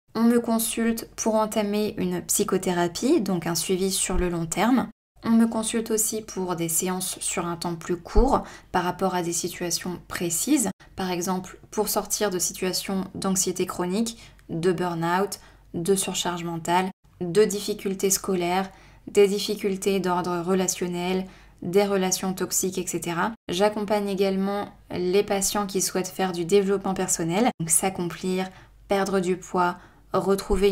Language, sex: French, female